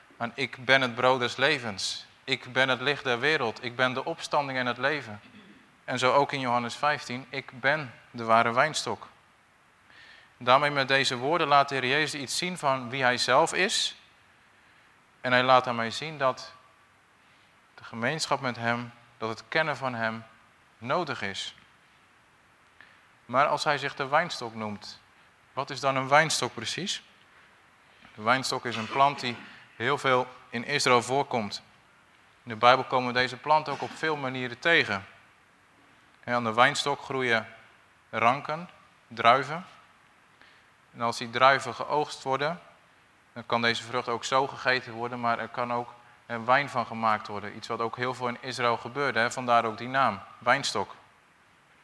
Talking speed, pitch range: 160 wpm, 115-135 Hz